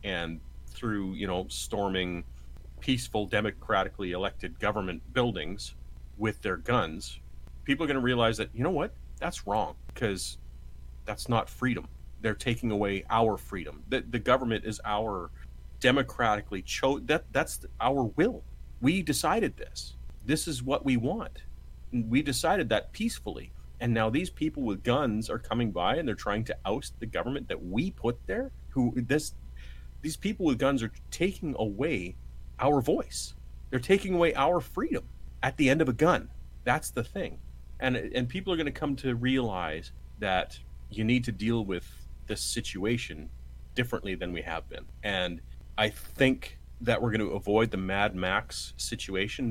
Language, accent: English, American